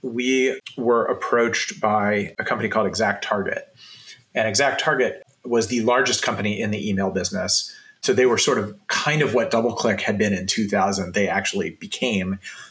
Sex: male